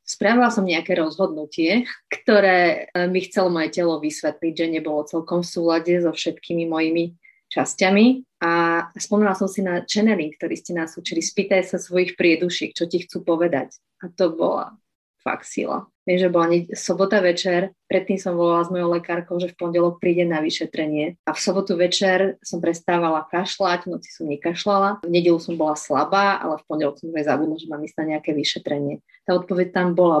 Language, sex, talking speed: Slovak, female, 180 wpm